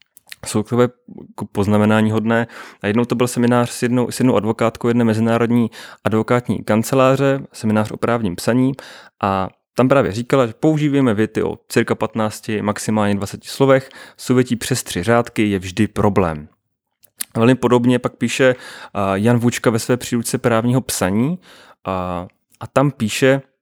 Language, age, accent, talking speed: Czech, 30-49, native, 140 wpm